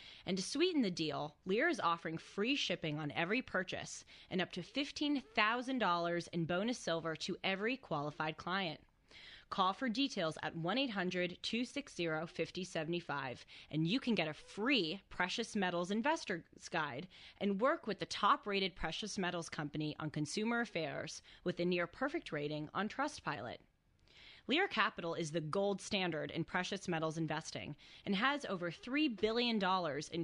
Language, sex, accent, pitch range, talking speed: English, female, American, 160-225 Hz, 145 wpm